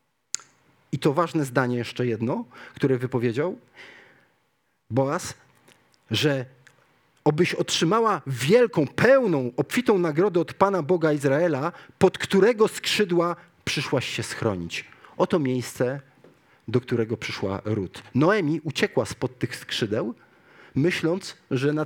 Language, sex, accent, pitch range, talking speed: Polish, male, native, 115-160 Hz, 110 wpm